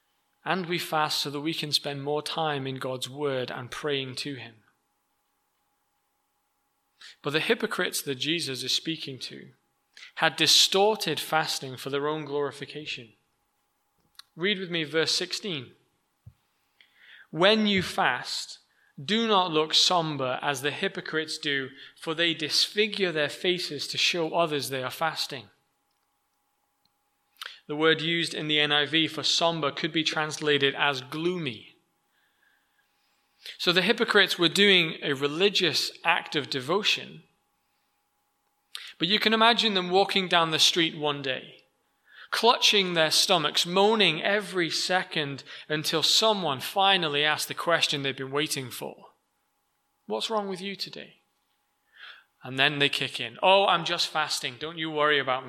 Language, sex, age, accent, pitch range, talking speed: English, male, 20-39, British, 145-180 Hz, 140 wpm